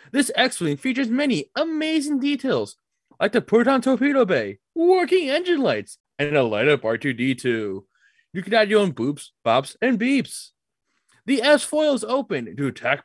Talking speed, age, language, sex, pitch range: 150 wpm, 20-39, English, male, 190-285 Hz